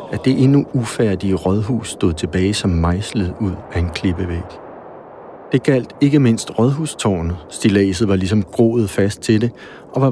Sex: male